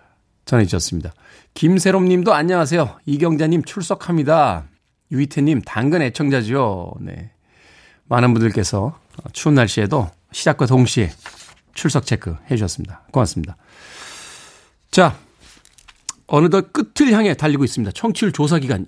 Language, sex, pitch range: Korean, male, 115-165 Hz